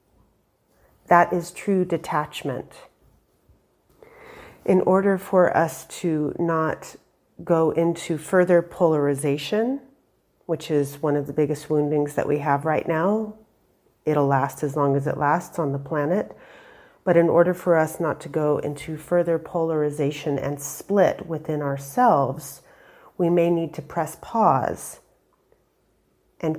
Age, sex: 40-59, female